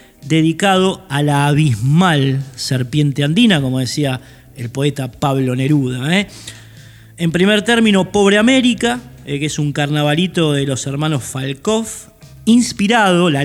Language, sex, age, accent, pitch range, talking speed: Spanish, male, 20-39, Argentinian, 130-170 Hz, 130 wpm